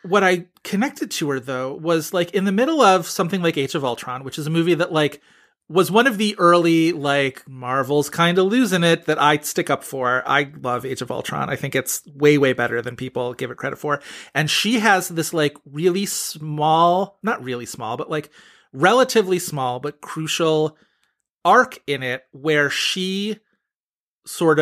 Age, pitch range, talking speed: 30-49, 140-175 Hz, 190 wpm